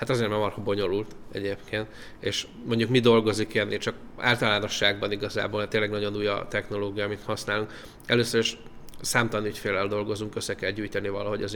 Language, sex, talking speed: Hungarian, male, 155 wpm